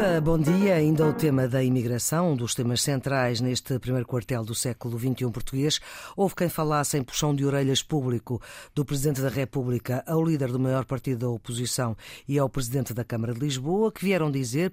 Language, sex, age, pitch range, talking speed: Portuguese, female, 50-69, 130-160 Hz, 190 wpm